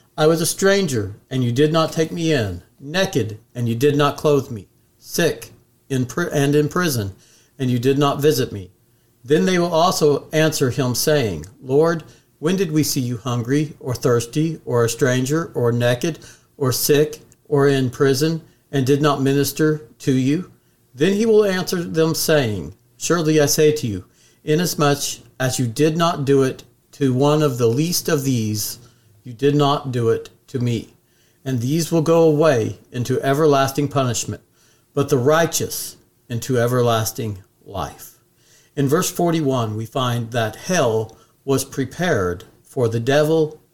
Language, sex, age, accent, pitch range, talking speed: English, male, 50-69, American, 120-155 Hz, 160 wpm